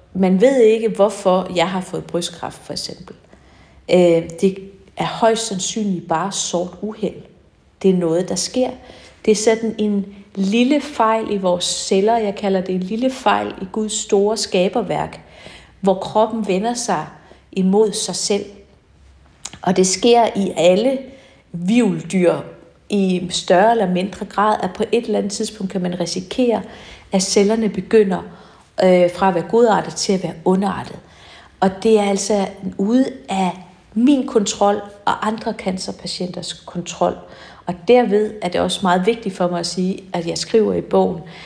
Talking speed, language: 155 wpm, Danish